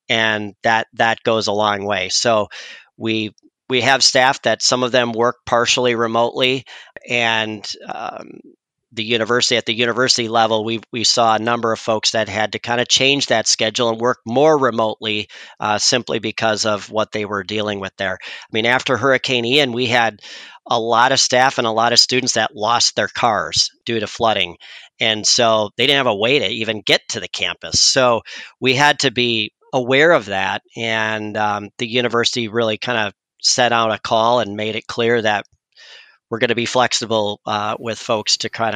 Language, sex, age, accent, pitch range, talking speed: English, male, 40-59, American, 105-125 Hz, 195 wpm